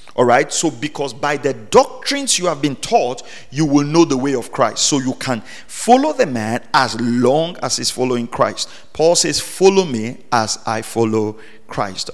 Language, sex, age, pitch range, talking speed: English, male, 40-59, 115-150 Hz, 190 wpm